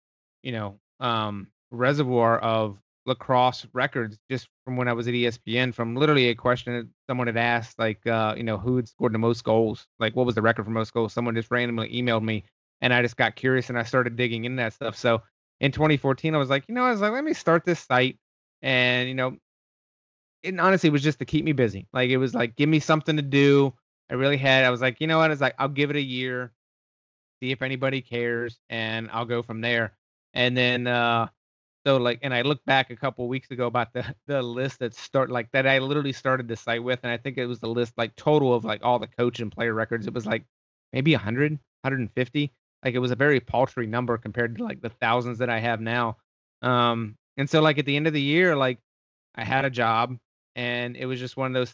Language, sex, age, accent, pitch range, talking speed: English, male, 30-49, American, 115-135 Hz, 240 wpm